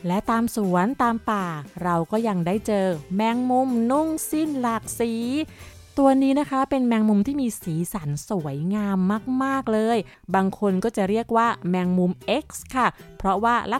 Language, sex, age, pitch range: Thai, female, 20-39, 180-235 Hz